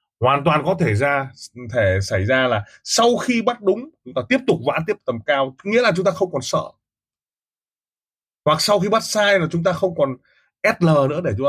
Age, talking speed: 20-39, 220 wpm